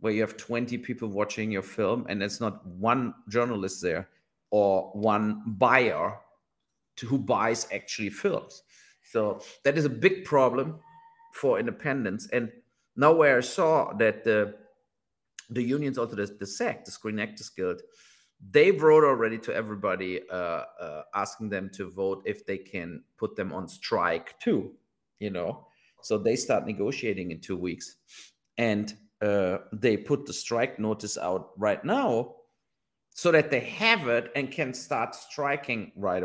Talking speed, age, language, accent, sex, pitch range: 155 wpm, 50-69, English, German, male, 100-130 Hz